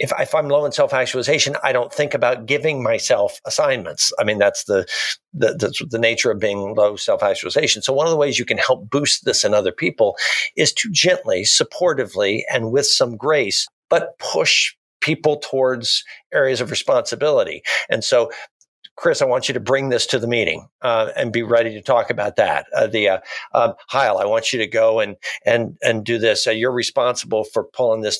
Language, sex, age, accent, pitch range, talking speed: English, male, 50-69, American, 110-170 Hz, 205 wpm